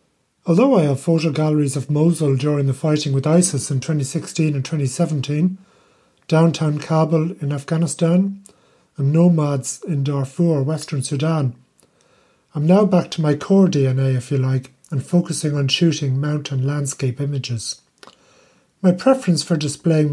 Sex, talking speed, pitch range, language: male, 140 wpm, 140-170 Hz, English